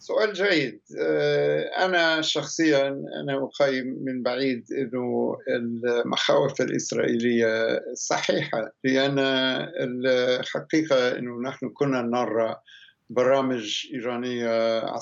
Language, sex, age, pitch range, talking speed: Arabic, male, 60-79, 115-140 Hz, 80 wpm